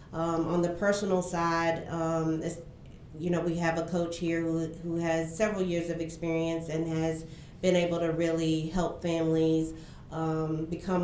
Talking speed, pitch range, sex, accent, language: 170 wpm, 150-165 Hz, female, American, English